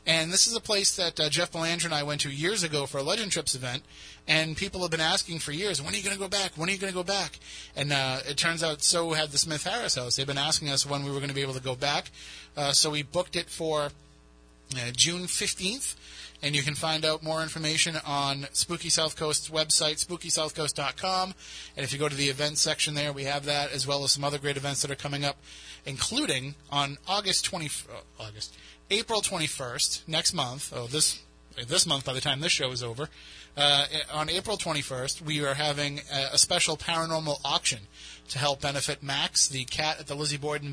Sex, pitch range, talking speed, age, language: male, 140-165 Hz, 225 wpm, 30-49, English